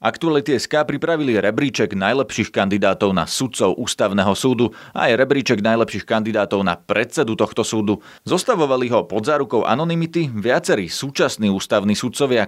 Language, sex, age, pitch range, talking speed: Slovak, male, 30-49, 105-140 Hz, 135 wpm